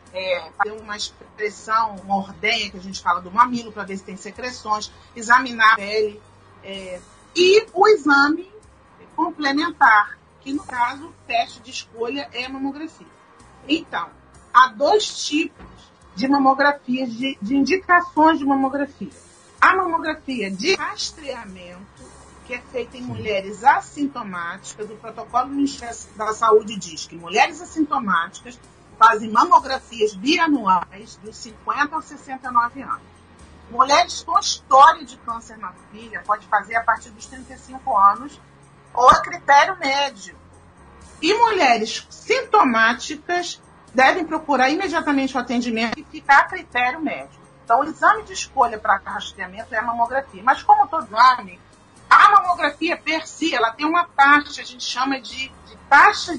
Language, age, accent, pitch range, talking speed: Portuguese, 40-59, Brazilian, 220-310 Hz, 145 wpm